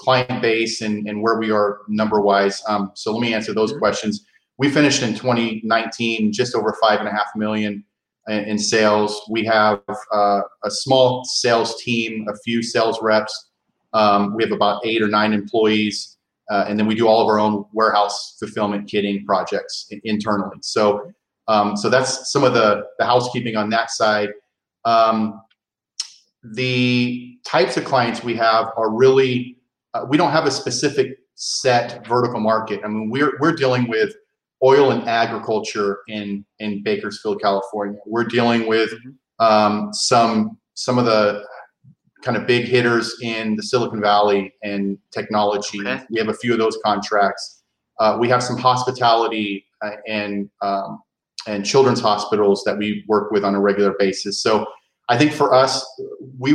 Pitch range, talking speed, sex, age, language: 105-120 Hz, 165 wpm, male, 30-49, English